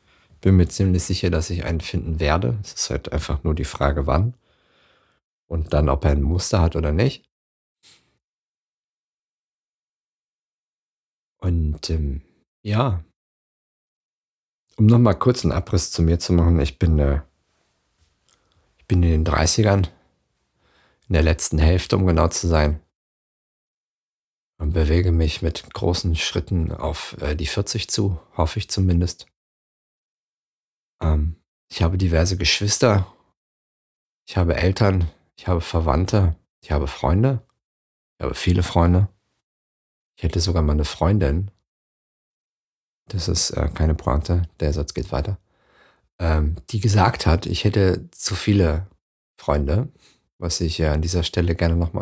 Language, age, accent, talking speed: German, 50-69, German, 130 wpm